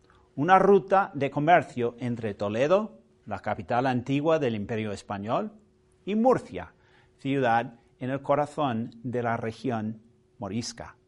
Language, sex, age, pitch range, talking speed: Spanish, male, 40-59, 115-160 Hz, 120 wpm